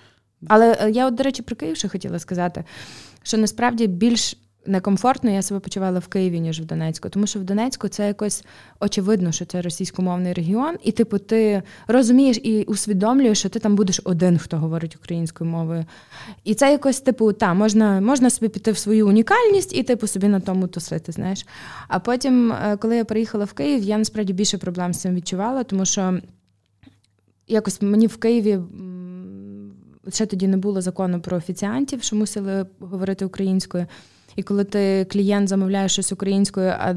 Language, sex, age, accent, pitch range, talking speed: Ukrainian, female, 20-39, native, 180-220 Hz, 170 wpm